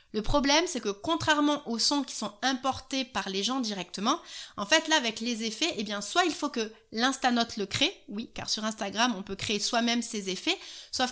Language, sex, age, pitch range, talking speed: French, female, 30-49, 220-265 Hz, 215 wpm